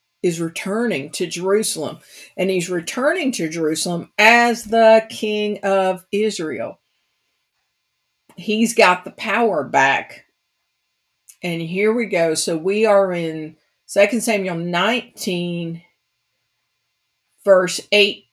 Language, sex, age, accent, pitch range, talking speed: English, female, 50-69, American, 160-205 Hz, 105 wpm